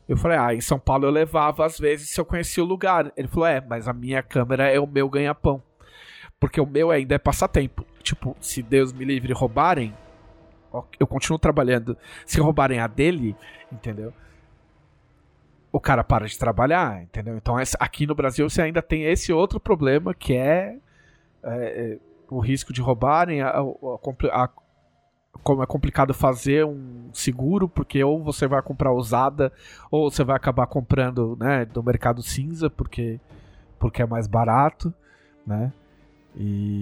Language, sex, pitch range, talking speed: Portuguese, male, 120-150 Hz, 165 wpm